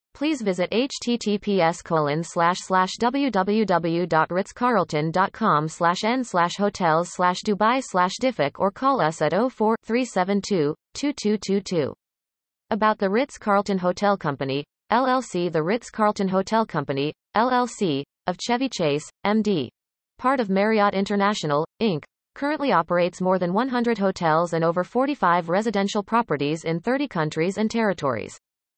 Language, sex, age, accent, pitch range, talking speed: English, female, 30-49, American, 170-225 Hz, 115 wpm